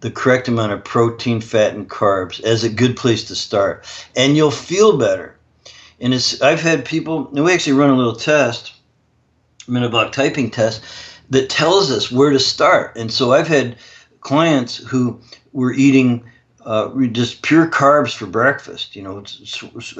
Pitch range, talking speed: 115-135 Hz, 165 wpm